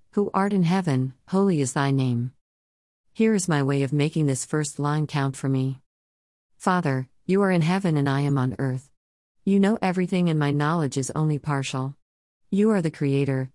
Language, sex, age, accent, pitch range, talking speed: English, female, 50-69, American, 130-165 Hz, 190 wpm